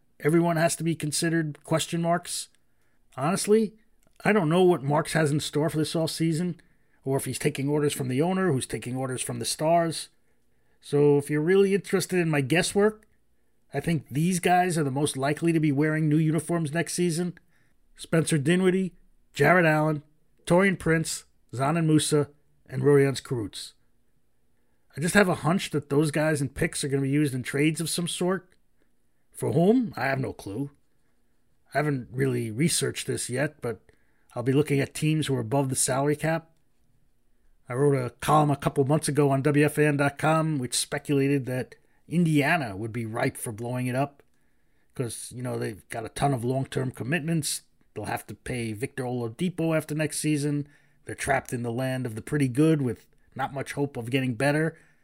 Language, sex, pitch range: English, male, 130-165 Hz